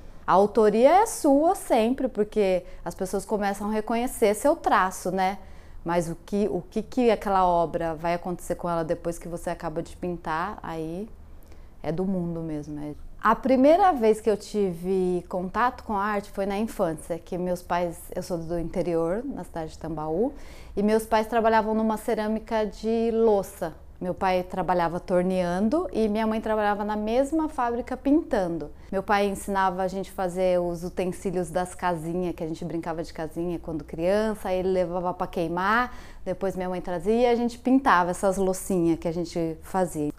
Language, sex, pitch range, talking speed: Portuguese, female, 175-225 Hz, 175 wpm